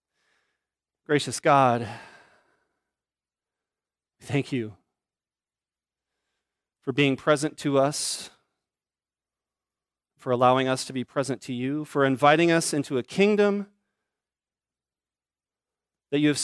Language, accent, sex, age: English, American, male, 30-49